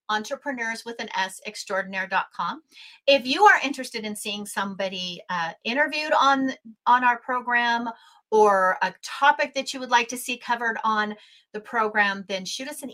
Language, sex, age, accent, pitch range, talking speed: English, female, 40-59, American, 200-270 Hz, 160 wpm